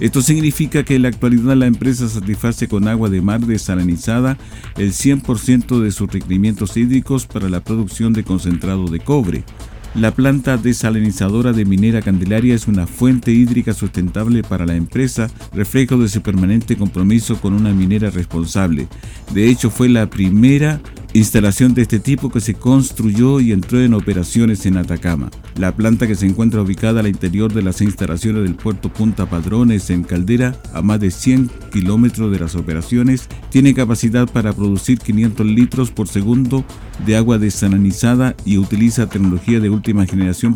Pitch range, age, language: 100-120 Hz, 50-69, Spanish